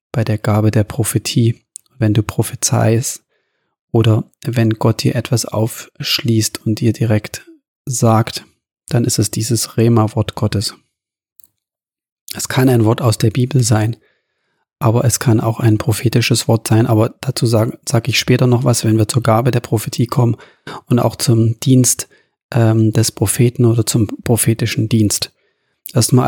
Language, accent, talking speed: German, German, 155 wpm